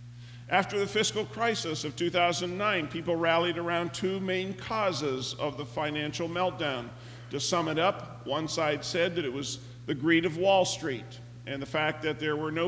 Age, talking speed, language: 50-69, 180 wpm, English